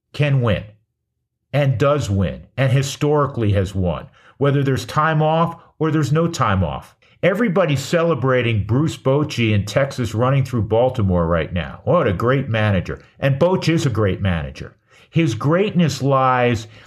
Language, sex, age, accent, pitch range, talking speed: English, male, 50-69, American, 105-145 Hz, 150 wpm